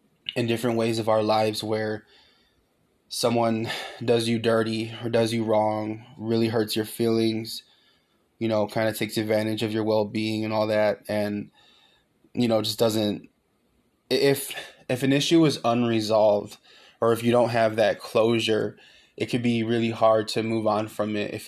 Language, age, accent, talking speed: English, 20-39, American, 170 wpm